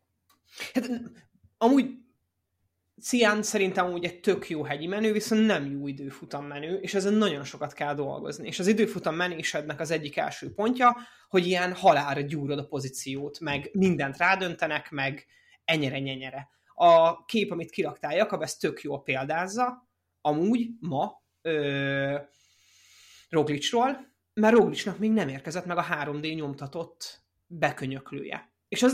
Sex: male